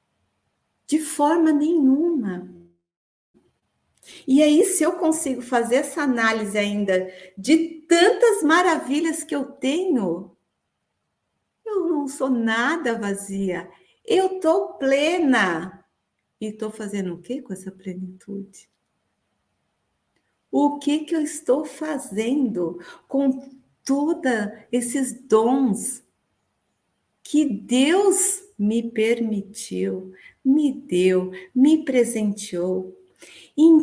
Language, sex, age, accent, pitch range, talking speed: Portuguese, female, 50-69, Brazilian, 185-305 Hz, 95 wpm